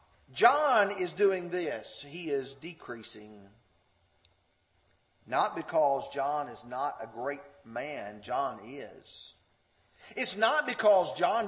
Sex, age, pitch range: male, 40-59, 140-220 Hz